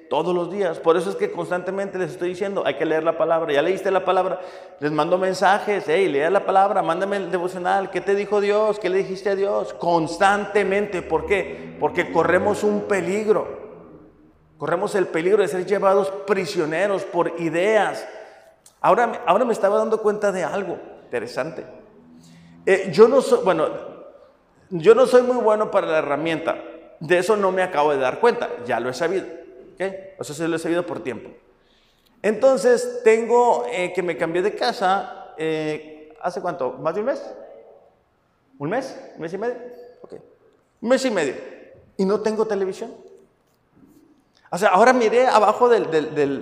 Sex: male